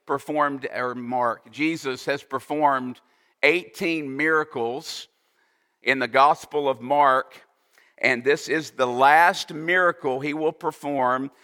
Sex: male